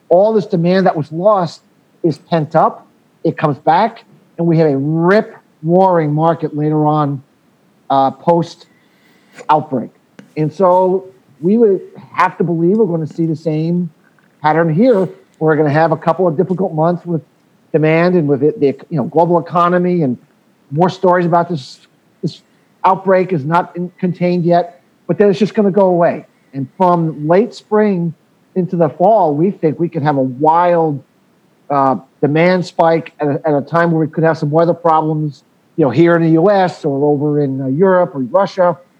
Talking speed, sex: 185 wpm, male